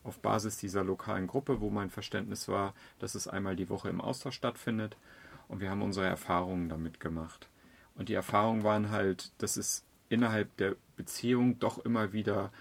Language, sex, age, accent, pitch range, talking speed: German, male, 40-59, German, 95-115 Hz, 175 wpm